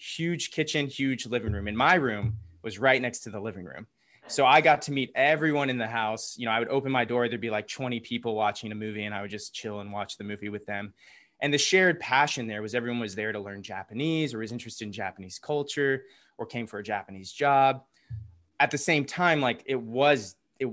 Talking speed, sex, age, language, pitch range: 235 wpm, male, 20-39, English, 115-140 Hz